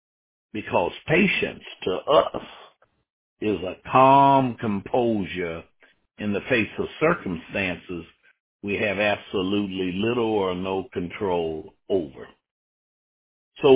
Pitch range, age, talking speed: 100-120 Hz, 60-79, 95 wpm